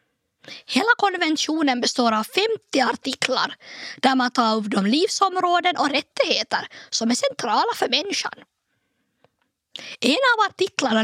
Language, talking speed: Swedish, 120 wpm